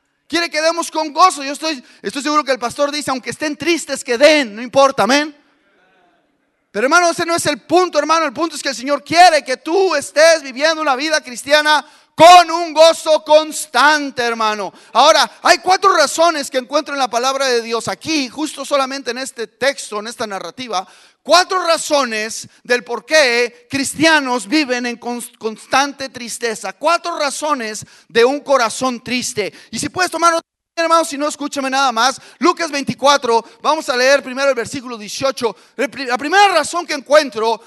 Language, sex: English, male